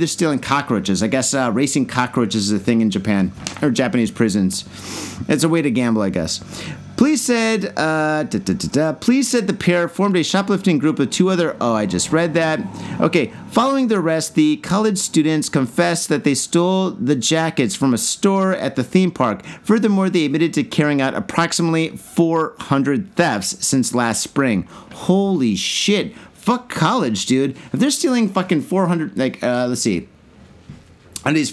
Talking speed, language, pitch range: 170 wpm, English, 135-180 Hz